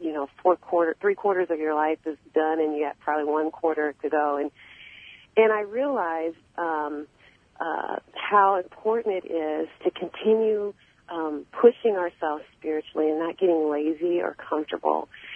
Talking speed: 160 wpm